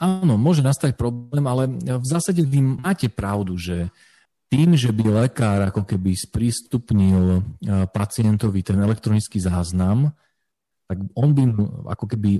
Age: 40-59